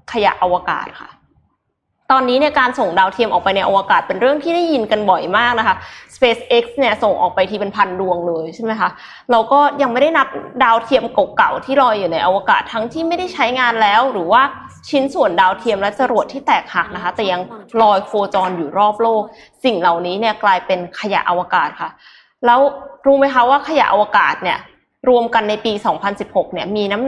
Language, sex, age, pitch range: Thai, female, 20-39, 200-265 Hz